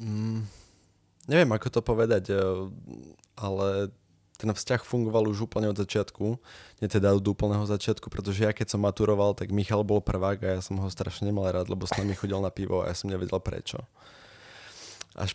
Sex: male